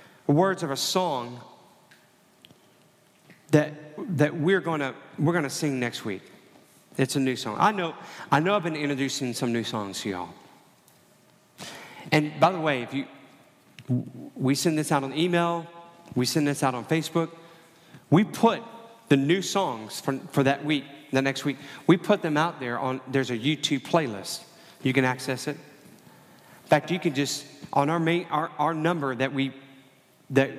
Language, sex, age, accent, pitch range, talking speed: English, male, 40-59, American, 140-170 Hz, 170 wpm